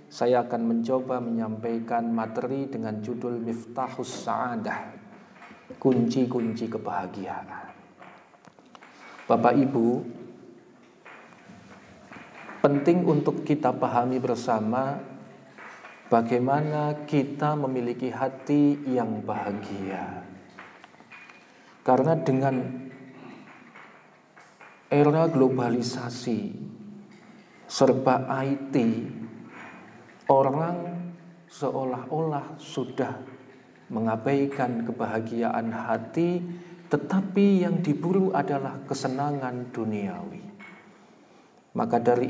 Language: Indonesian